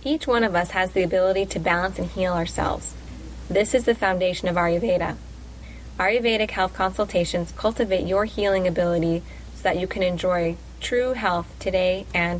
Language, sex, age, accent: English, female, 20-39, American